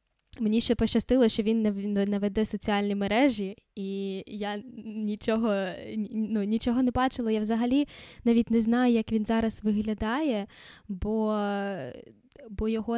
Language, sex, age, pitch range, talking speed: Ukrainian, female, 10-29, 205-230 Hz, 130 wpm